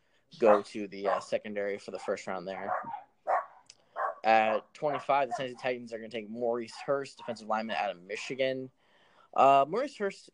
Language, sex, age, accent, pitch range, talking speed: English, male, 20-39, American, 110-145 Hz, 170 wpm